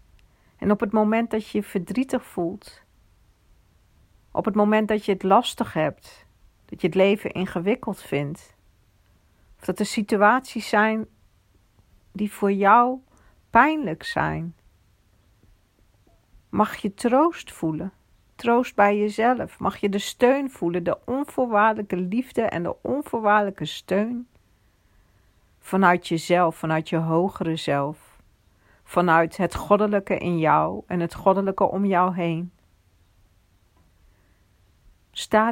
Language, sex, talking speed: English, female, 120 wpm